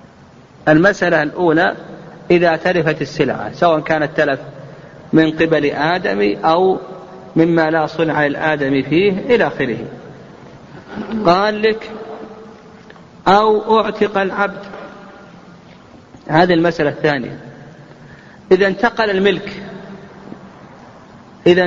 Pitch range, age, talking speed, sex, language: 150-195 Hz, 40-59, 85 wpm, male, Arabic